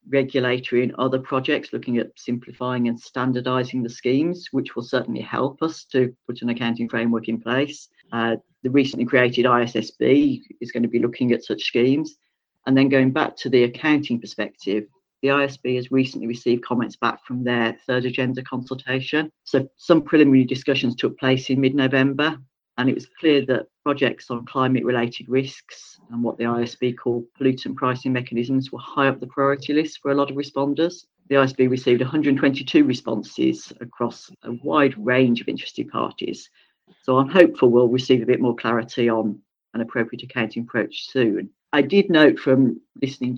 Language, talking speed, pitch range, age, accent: English, 175 wpm, 120-135 Hz, 40-59, British